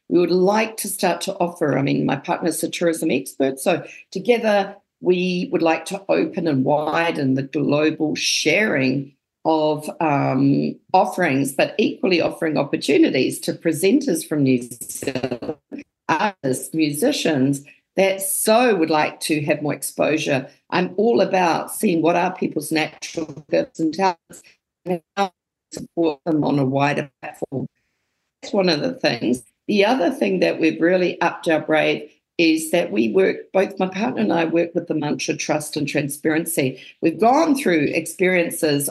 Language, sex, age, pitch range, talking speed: English, female, 50-69, 150-185 Hz, 155 wpm